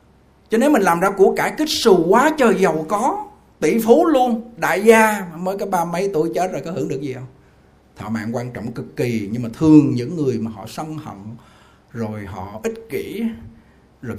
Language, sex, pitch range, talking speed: Vietnamese, male, 105-160 Hz, 210 wpm